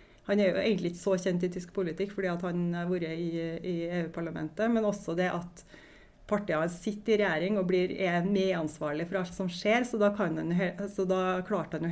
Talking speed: 200 wpm